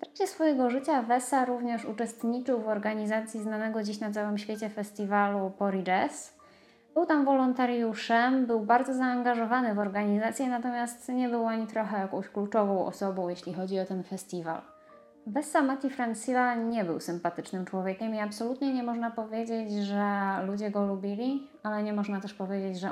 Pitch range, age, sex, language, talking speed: 190-240 Hz, 20-39, female, Polish, 155 wpm